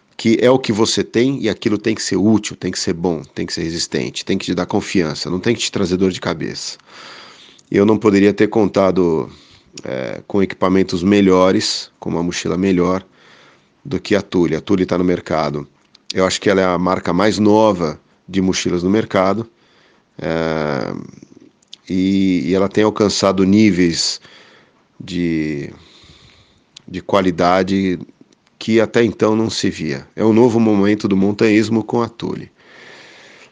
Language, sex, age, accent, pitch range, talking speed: Portuguese, male, 40-59, Brazilian, 90-115 Hz, 165 wpm